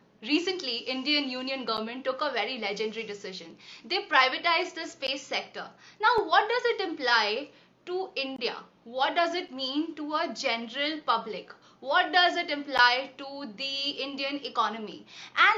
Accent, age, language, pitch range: native, 20-39, Hindi, 230-300 Hz